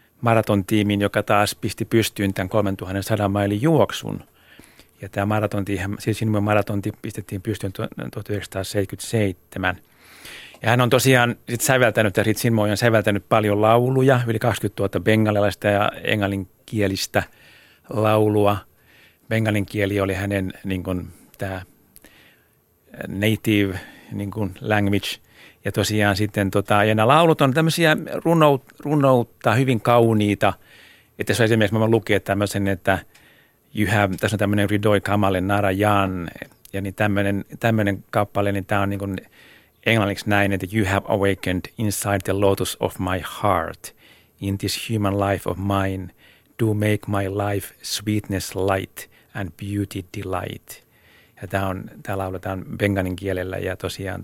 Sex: male